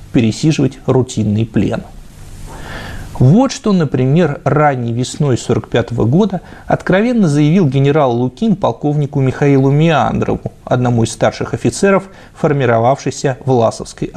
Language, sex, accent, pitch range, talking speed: Russian, male, native, 115-145 Hz, 95 wpm